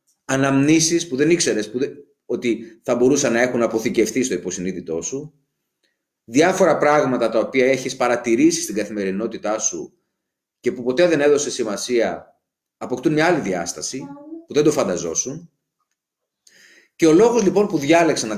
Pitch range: 130-190 Hz